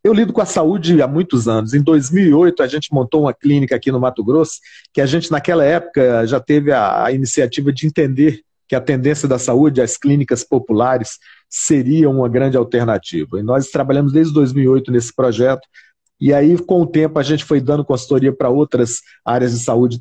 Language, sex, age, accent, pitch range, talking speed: Portuguese, male, 40-59, Brazilian, 125-160 Hz, 195 wpm